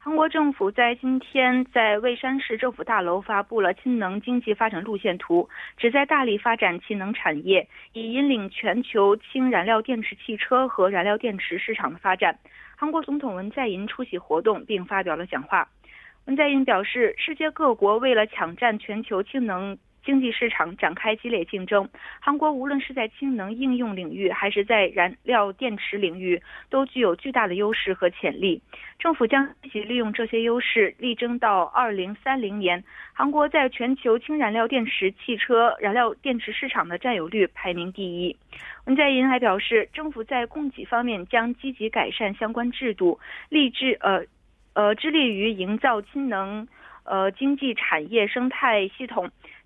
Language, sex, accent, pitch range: Korean, female, Chinese, 205-265 Hz